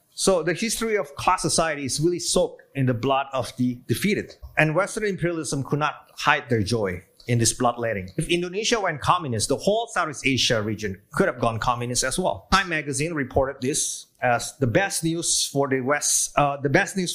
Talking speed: 195 wpm